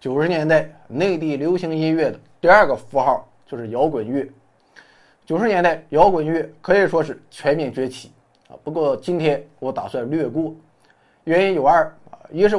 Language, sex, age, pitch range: Chinese, male, 20-39, 135-185 Hz